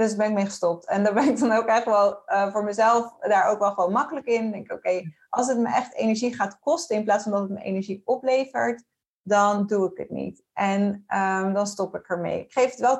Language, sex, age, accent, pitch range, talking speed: Dutch, female, 30-49, Dutch, 195-235 Hz, 270 wpm